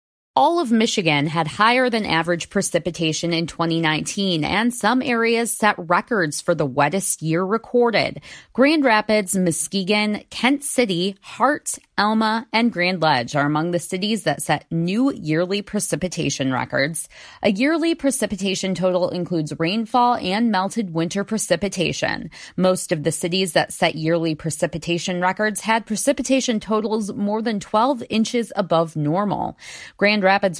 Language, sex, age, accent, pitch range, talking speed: English, female, 20-39, American, 165-225 Hz, 135 wpm